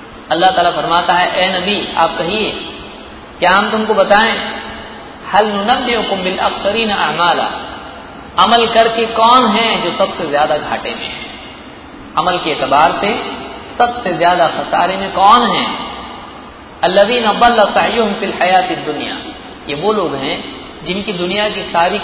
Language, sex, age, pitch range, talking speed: Hindi, male, 40-59, 175-225 Hz, 135 wpm